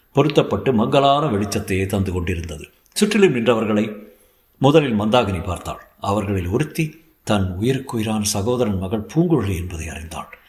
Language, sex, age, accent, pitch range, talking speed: Tamil, male, 60-79, native, 100-140 Hz, 115 wpm